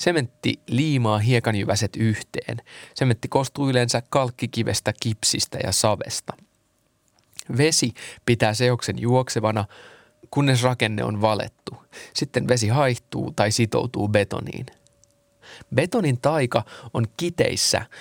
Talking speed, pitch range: 95 wpm, 110-130 Hz